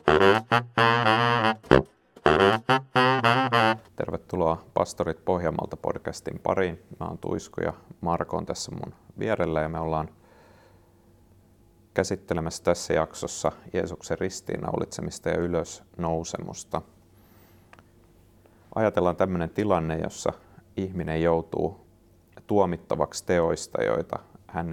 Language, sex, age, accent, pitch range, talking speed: Finnish, male, 30-49, native, 85-100 Hz, 85 wpm